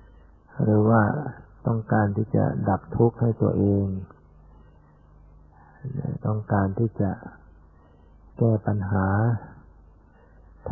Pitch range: 75-115 Hz